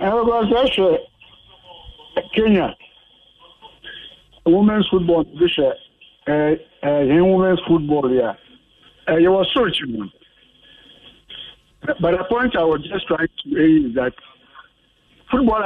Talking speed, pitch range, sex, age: 100 wpm, 155-220 Hz, male, 60-79